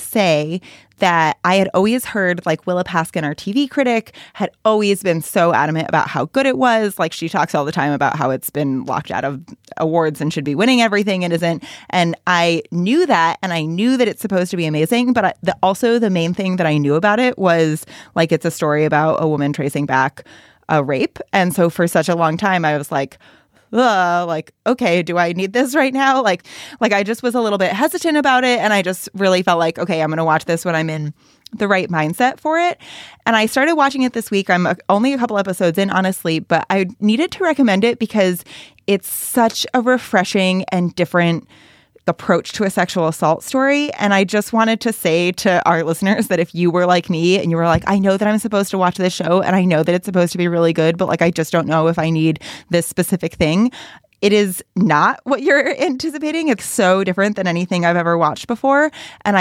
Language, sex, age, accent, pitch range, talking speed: English, female, 20-39, American, 165-215 Hz, 230 wpm